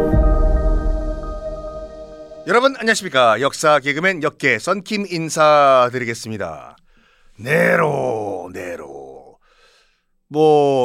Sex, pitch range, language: male, 120-185 Hz, Korean